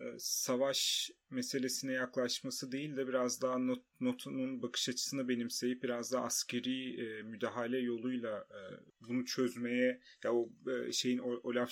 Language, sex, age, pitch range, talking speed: Turkish, male, 30-49, 115-130 Hz, 135 wpm